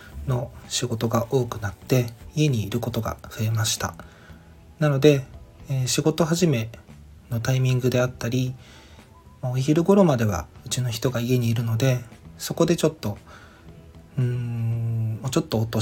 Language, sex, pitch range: Japanese, male, 100-125 Hz